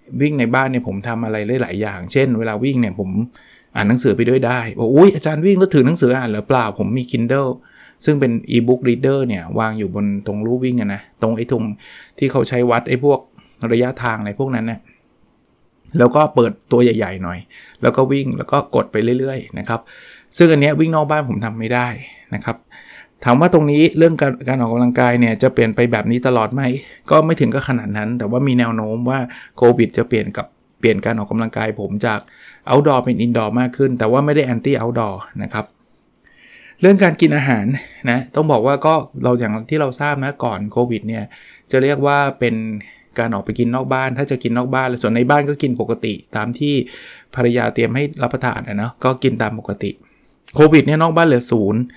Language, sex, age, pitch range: Thai, male, 20-39, 115-135 Hz